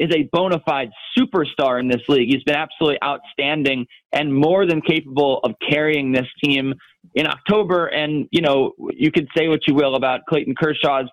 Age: 30-49